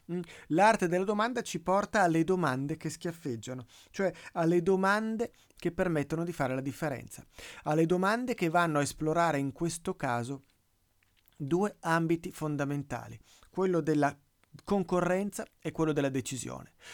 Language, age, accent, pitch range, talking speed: Italian, 30-49, native, 145-190 Hz, 130 wpm